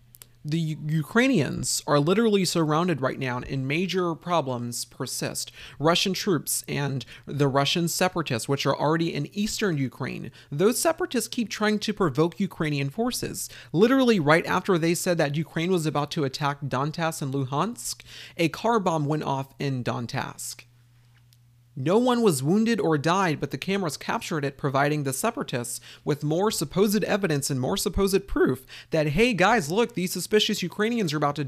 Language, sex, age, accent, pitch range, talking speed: English, male, 30-49, American, 135-190 Hz, 160 wpm